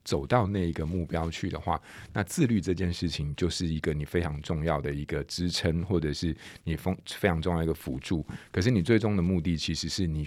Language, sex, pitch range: Chinese, male, 80-100 Hz